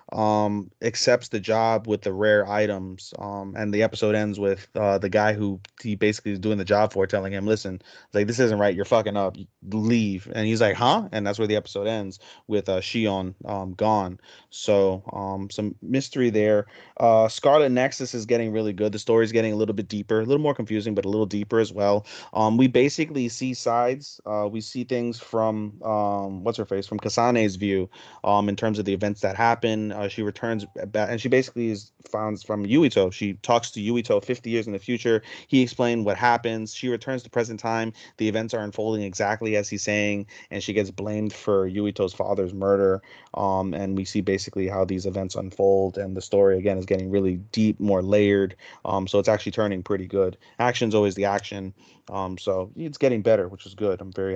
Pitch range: 100-115 Hz